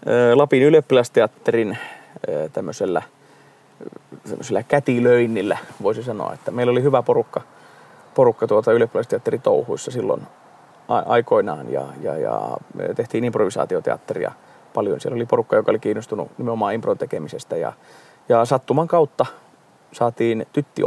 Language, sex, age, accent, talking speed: Finnish, male, 30-49, native, 110 wpm